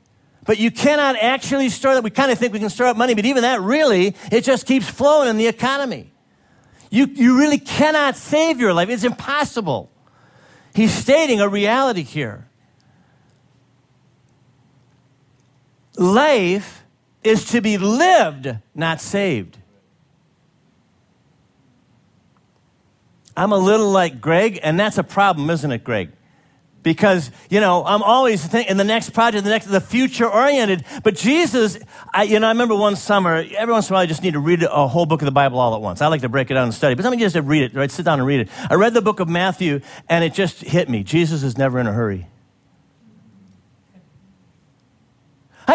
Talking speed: 180 wpm